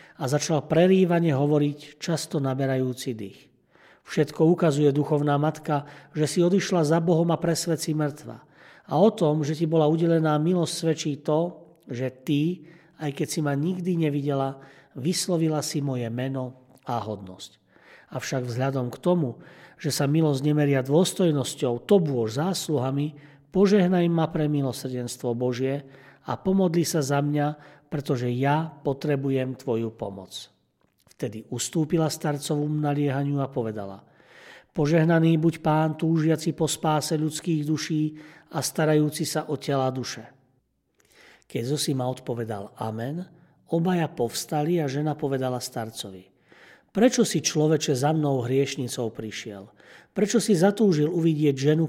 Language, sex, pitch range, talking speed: Slovak, male, 130-165 Hz, 130 wpm